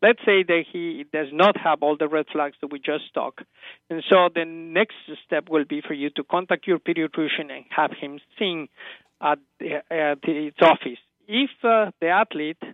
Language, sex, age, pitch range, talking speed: English, male, 50-69, 150-180 Hz, 185 wpm